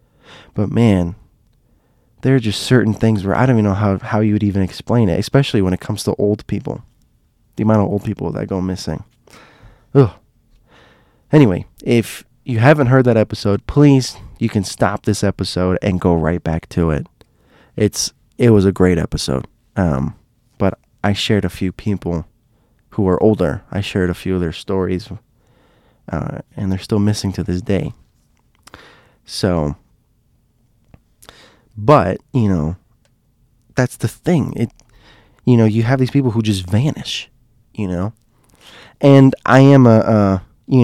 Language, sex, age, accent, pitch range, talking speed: English, male, 20-39, American, 95-115 Hz, 160 wpm